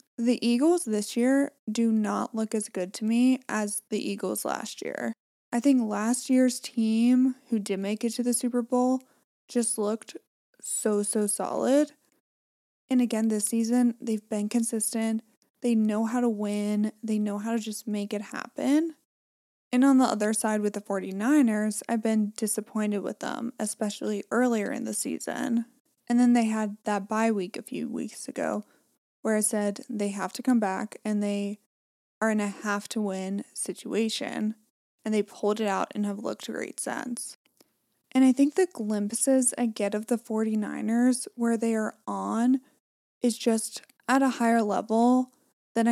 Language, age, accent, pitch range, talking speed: English, 20-39, American, 215-250 Hz, 170 wpm